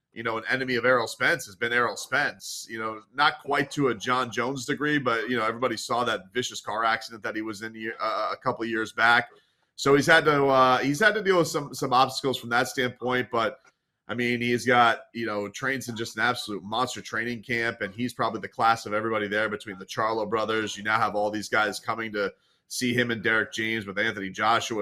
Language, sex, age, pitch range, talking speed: English, male, 30-49, 110-145 Hz, 235 wpm